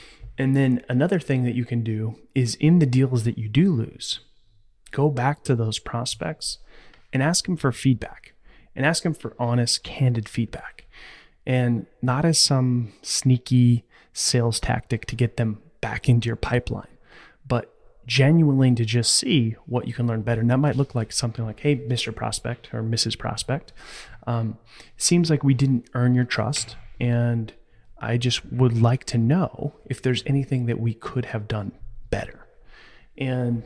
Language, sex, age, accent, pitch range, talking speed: English, male, 30-49, American, 115-135 Hz, 170 wpm